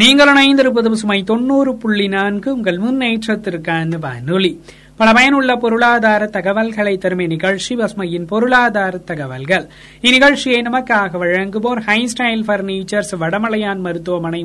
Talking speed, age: 100 wpm, 30-49